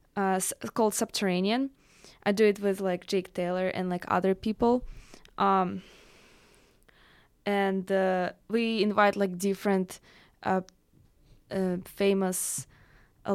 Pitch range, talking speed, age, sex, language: 185-205 Hz, 115 wpm, 20-39, female, English